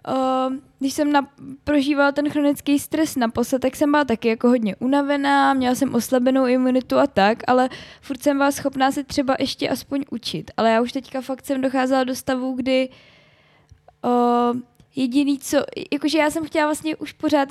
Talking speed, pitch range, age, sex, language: 175 wpm, 260-285 Hz, 10-29, female, Czech